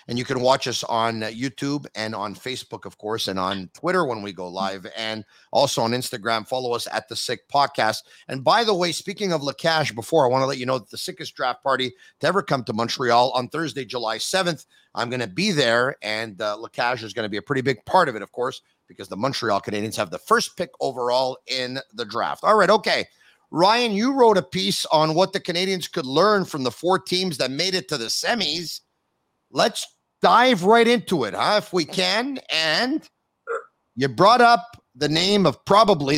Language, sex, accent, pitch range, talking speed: English, male, American, 125-185 Hz, 215 wpm